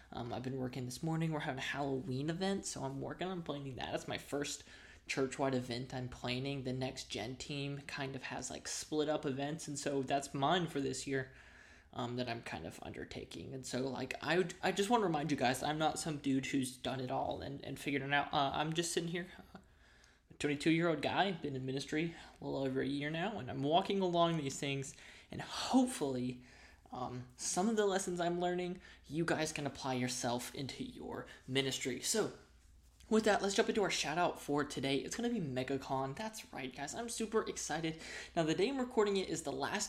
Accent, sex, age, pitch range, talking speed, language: American, male, 20-39, 135-175 Hz, 220 wpm, English